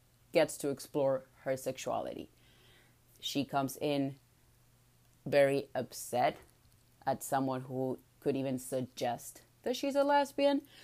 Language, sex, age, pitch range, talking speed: English, female, 30-49, 125-150 Hz, 110 wpm